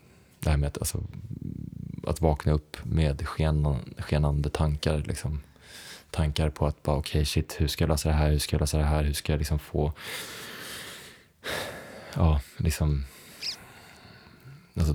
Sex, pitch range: male, 75-85 Hz